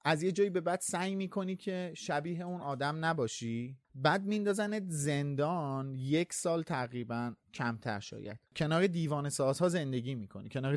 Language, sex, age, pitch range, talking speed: Persian, male, 30-49, 125-175 Hz, 145 wpm